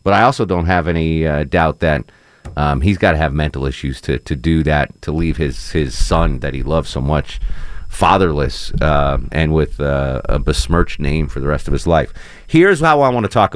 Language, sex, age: English, male, 40-59